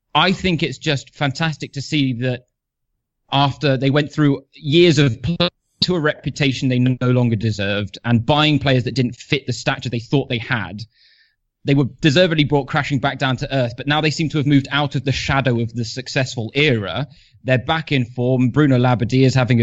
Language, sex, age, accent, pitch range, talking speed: English, male, 20-39, British, 120-150 Hz, 200 wpm